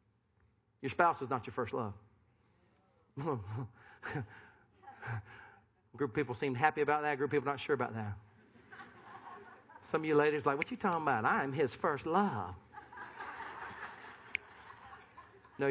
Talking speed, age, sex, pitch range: 140 wpm, 40-59, male, 115-170 Hz